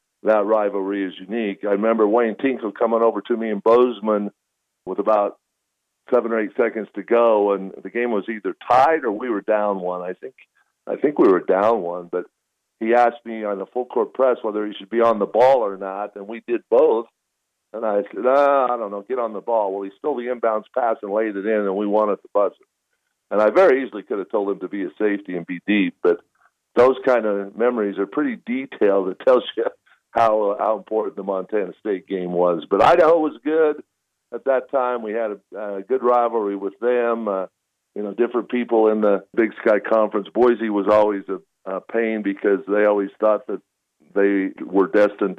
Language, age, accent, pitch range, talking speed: English, 50-69, American, 100-120 Hz, 215 wpm